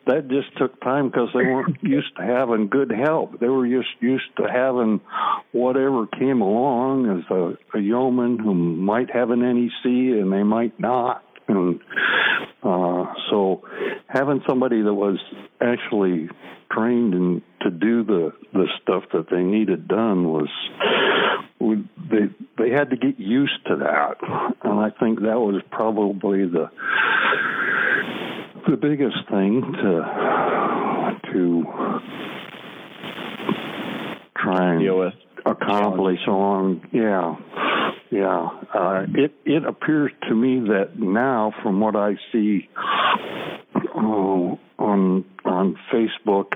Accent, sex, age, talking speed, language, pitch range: American, male, 60-79, 125 wpm, English, 100-125 Hz